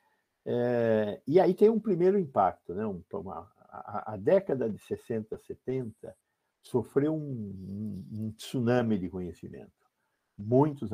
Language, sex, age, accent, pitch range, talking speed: Portuguese, male, 60-79, Brazilian, 100-125 Hz, 115 wpm